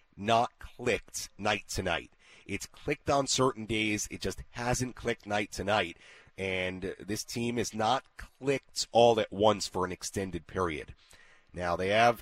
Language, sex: English, male